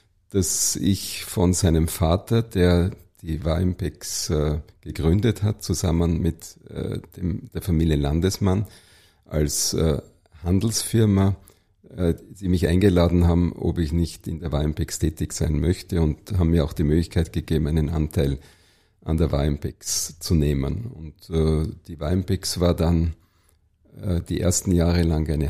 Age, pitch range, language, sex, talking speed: 50-69, 85-100 Hz, German, male, 145 wpm